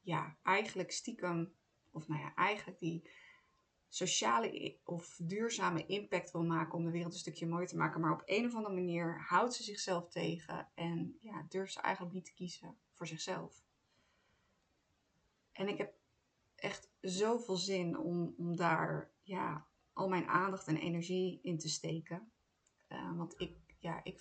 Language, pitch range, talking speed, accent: Dutch, 165-185 Hz, 160 wpm, Dutch